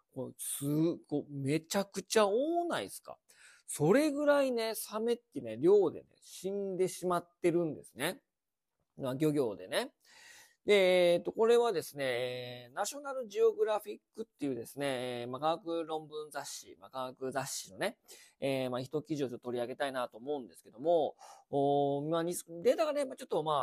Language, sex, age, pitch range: Japanese, male, 40-59, 135-210 Hz